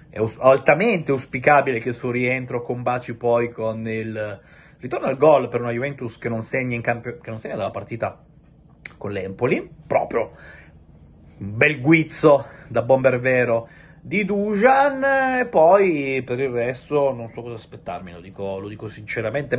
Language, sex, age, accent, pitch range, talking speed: Italian, male, 30-49, native, 110-135 Hz, 155 wpm